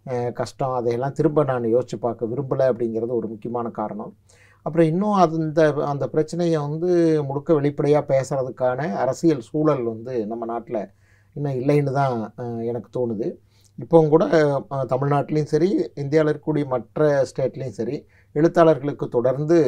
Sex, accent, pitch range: male, native, 120-155 Hz